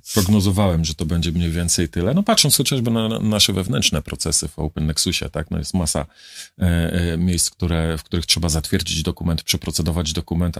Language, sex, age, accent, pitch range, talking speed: Polish, male, 40-59, native, 85-110 Hz, 170 wpm